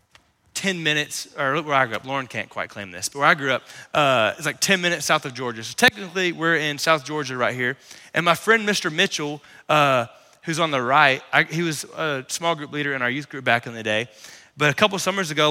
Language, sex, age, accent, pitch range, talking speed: English, male, 20-39, American, 145-210 Hz, 250 wpm